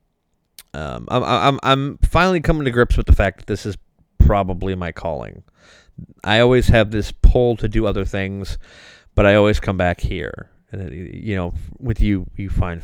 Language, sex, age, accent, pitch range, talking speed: English, male, 30-49, American, 85-115 Hz, 180 wpm